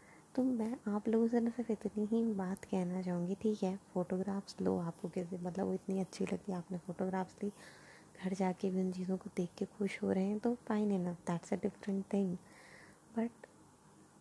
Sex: female